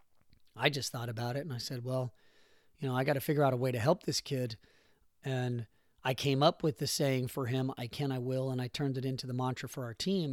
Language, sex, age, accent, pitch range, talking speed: English, male, 40-59, American, 120-155 Hz, 260 wpm